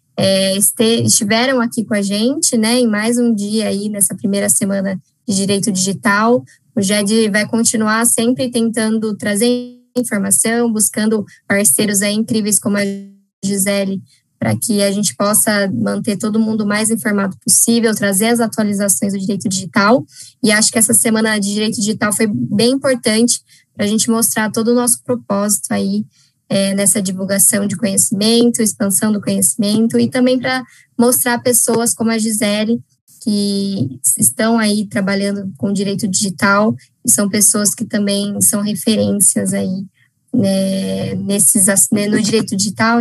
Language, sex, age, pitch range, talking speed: Portuguese, female, 10-29, 195-225 Hz, 150 wpm